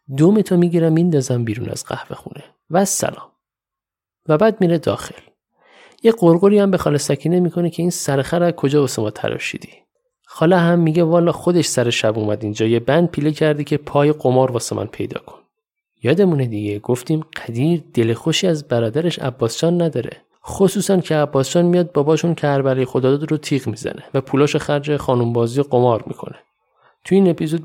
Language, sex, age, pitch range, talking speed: Persian, male, 50-69, 125-175 Hz, 170 wpm